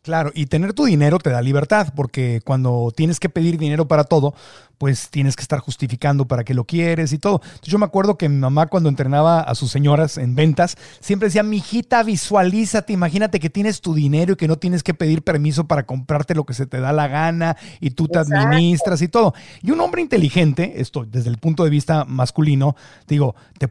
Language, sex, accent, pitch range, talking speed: Spanish, male, Mexican, 140-170 Hz, 215 wpm